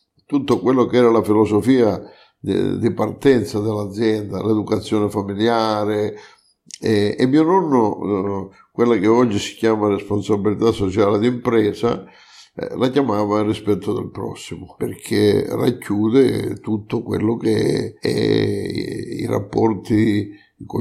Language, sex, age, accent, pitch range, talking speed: Italian, male, 50-69, native, 105-115 Hz, 105 wpm